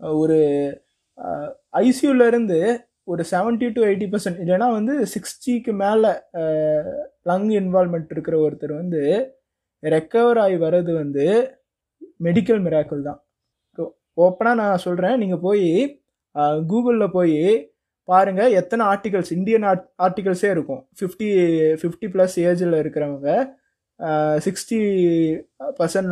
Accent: native